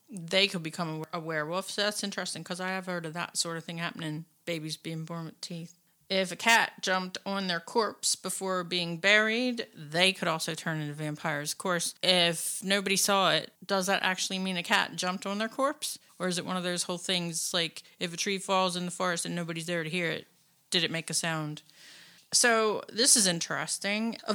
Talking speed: 215 wpm